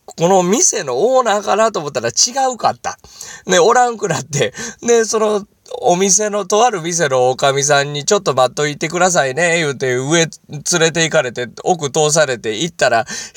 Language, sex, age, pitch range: Japanese, male, 20-39, 150-220 Hz